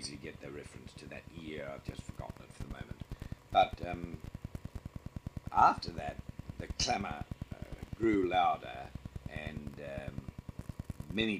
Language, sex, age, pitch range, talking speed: English, male, 50-69, 75-115 Hz, 130 wpm